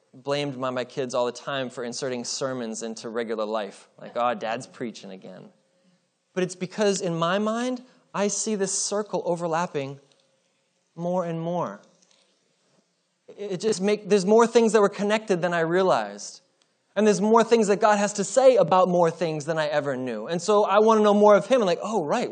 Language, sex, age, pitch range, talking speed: English, male, 20-39, 130-190 Hz, 195 wpm